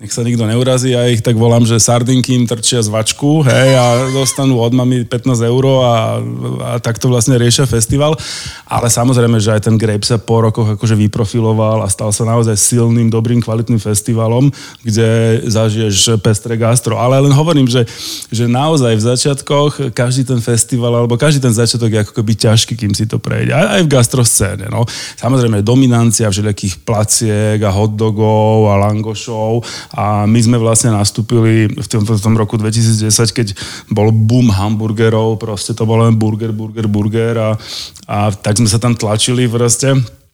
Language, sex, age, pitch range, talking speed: Slovak, male, 20-39, 110-120 Hz, 170 wpm